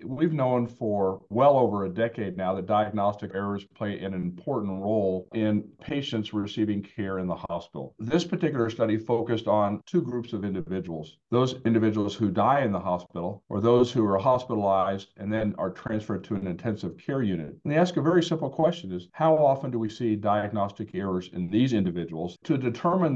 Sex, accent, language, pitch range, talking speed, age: male, American, English, 105-130 Hz, 185 wpm, 50-69